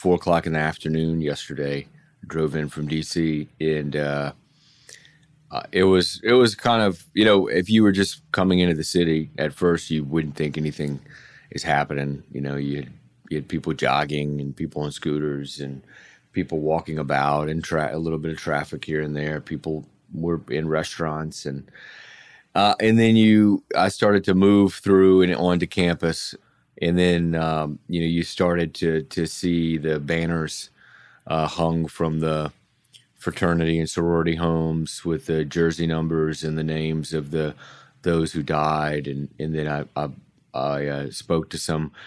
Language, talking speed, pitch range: English, 175 wpm, 75-85 Hz